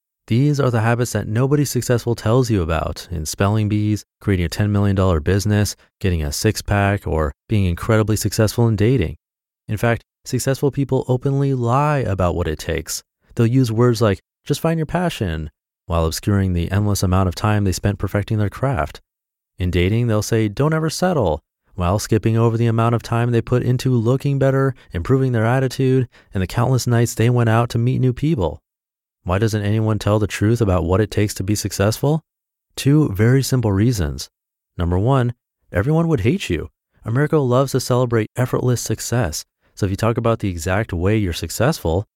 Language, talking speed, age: English, 185 wpm, 30-49